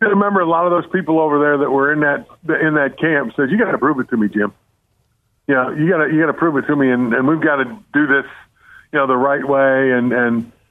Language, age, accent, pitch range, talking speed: English, 50-69, American, 135-170 Hz, 275 wpm